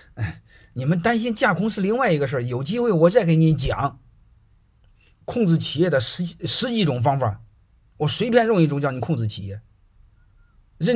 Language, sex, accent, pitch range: Chinese, male, native, 110-165 Hz